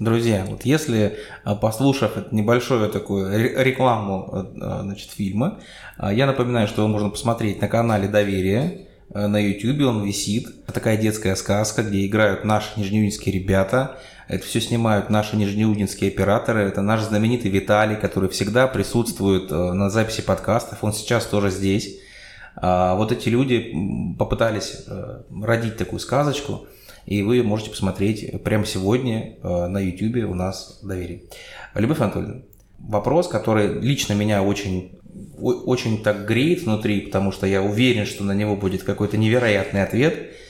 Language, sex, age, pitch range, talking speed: Russian, male, 20-39, 100-115 Hz, 130 wpm